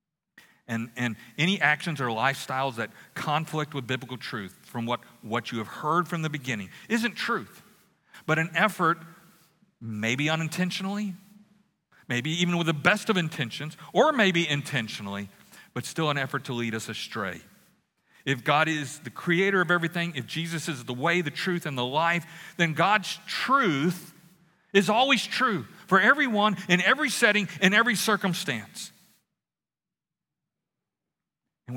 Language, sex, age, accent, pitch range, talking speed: English, male, 40-59, American, 120-175 Hz, 145 wpm